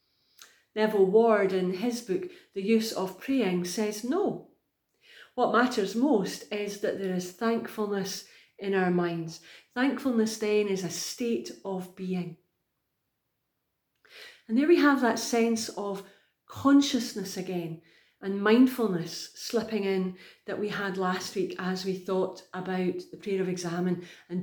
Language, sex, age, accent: English, female, 40-59, British